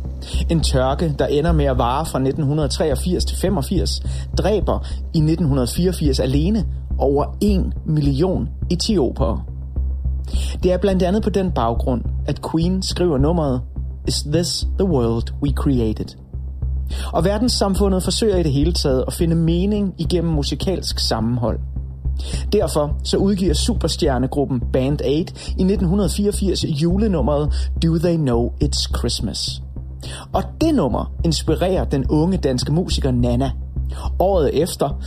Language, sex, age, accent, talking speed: Danish, male, 30-49, native, 125 wpm